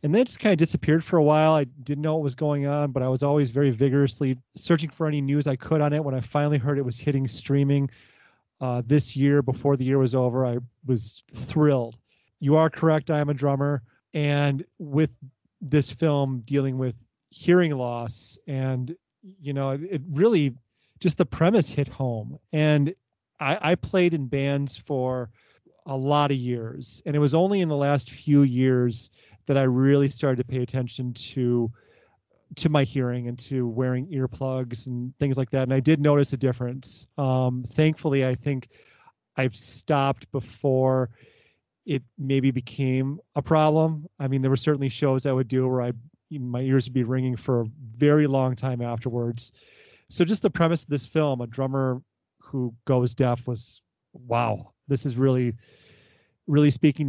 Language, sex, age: English, male, 30-49